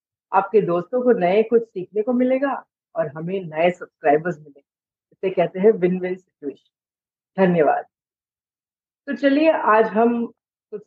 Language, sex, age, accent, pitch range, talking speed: Hindi, female, 50-69, native, 180-240 Hz, 140 wpm